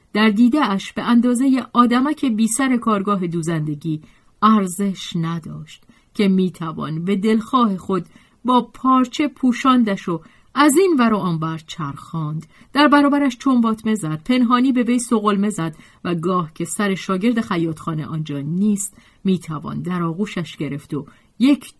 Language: Persian